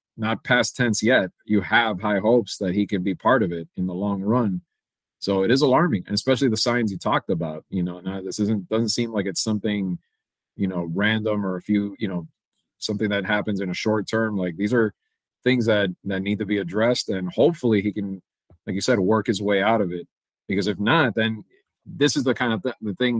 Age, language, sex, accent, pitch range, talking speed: 30-49, English, male, American, 100-120 Hz, 230 wpm